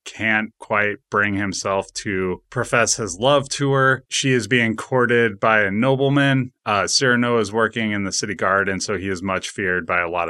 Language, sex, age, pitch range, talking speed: English, male, 30-49, 95-120 Hz, 200 wpm